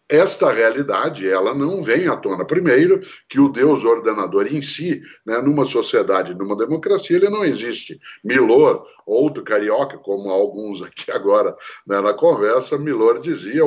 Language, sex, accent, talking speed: Portuguese, male, Brazilian, 150 wpm